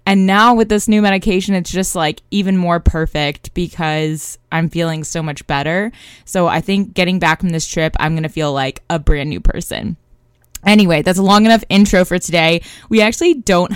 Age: 20-39